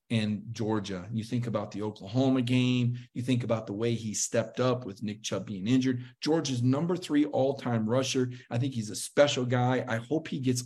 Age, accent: 40-59, American